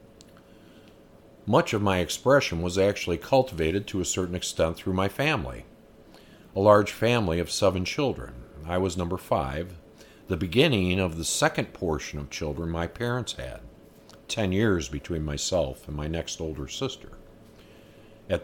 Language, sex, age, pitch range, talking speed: English, male, 50-69, 85-110 Hz, 145 wpm